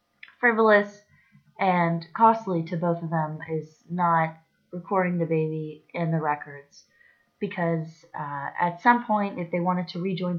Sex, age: female, 20-39